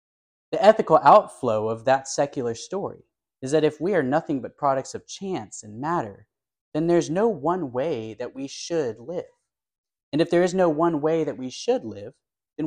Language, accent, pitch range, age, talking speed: English, American, 115-170 Hz, 30-49, 190 wpm